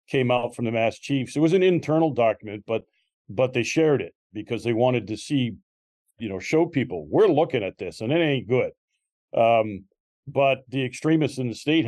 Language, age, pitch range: English, 40-59, 115-145 Hz